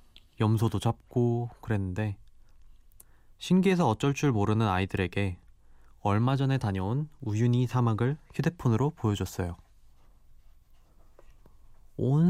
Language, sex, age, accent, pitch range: Korean, male, 20-39, native, 100-125 Hz